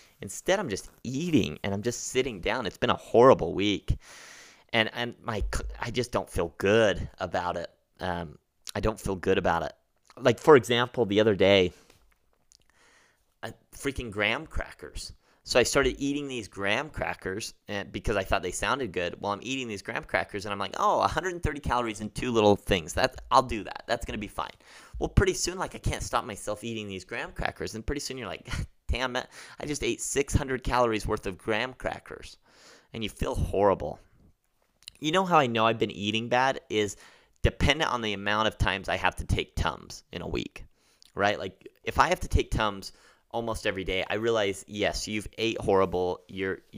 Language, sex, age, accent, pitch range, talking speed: English, male, 30-49, American, 95-120 Hz, 200 wpm